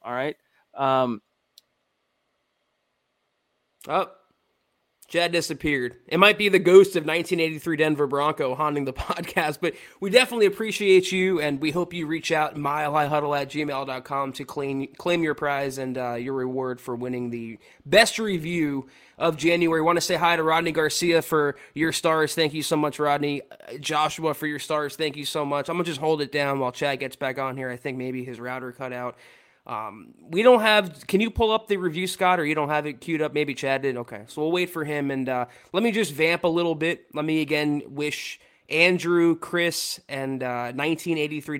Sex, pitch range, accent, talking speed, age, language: male, 135-170 Hz, American, 195 wpm, 20-39, English